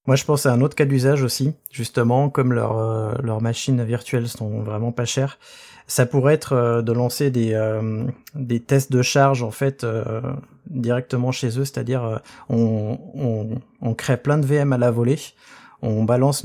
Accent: French